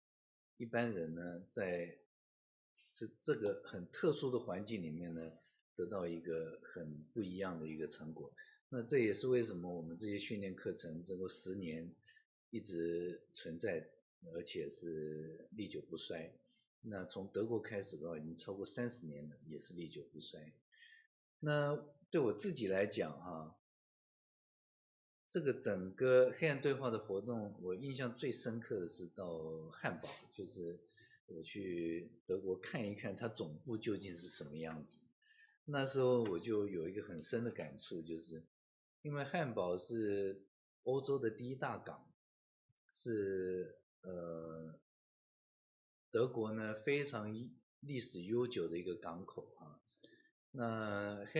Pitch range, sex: 85-125 Hz, male